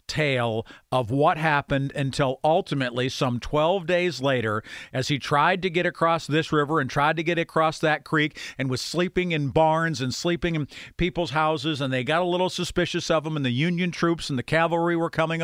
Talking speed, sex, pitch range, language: 200 wpm, male, 150-185 Hz, English